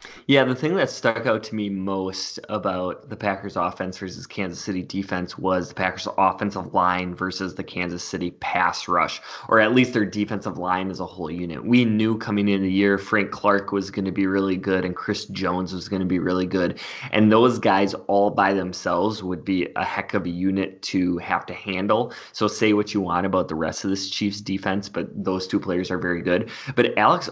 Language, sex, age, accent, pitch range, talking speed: English, male, 20-39, American, 90-105 Hz, 215 wpm